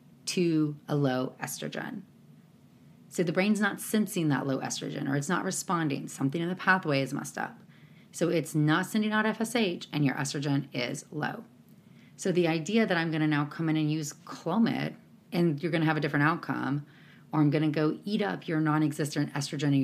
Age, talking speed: 30-49, 200 wpm